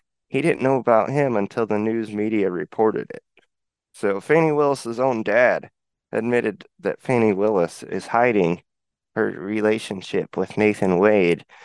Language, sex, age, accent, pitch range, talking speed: English, male, 20-39, American, 105-125 Hz, 140 wpm